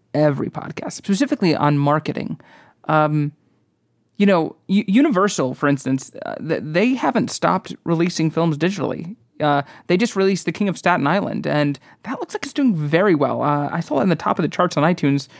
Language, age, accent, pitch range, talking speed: English, 30-49, American, 145-200 Hz, 185 wpm